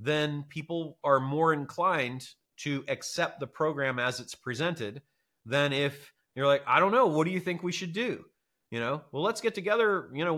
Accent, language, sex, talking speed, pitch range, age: American, English, male, 195 wpm, 120-150 Hz, 30-49